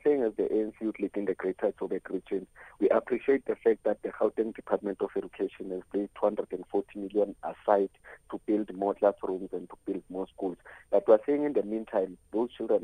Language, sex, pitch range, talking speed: English, male, 100-135 Hz, 185 wpm